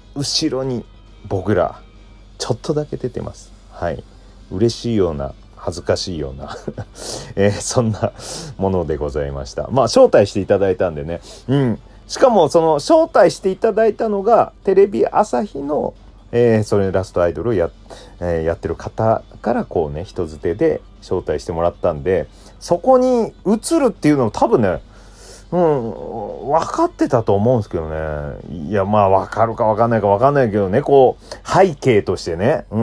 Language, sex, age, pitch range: Japanese, male, 40-59, 95-135 Hz